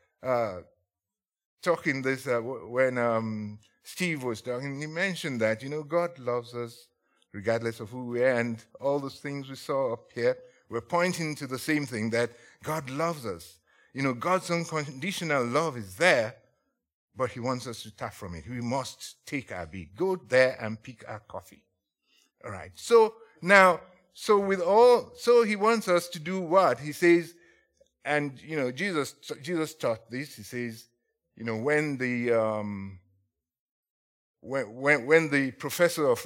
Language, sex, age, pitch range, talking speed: English, male, 50-69, 115-160 Hz, 165 wpm